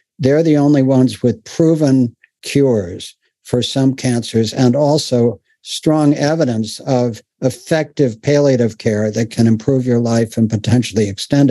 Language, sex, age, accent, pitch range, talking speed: English, male, 60-79, American, 115-140 Hz, 135 wpm